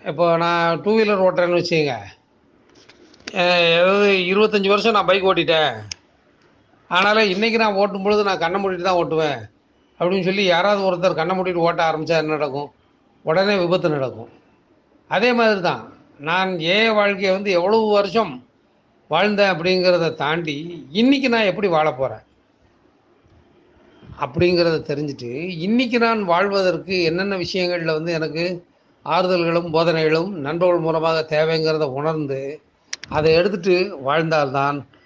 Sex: male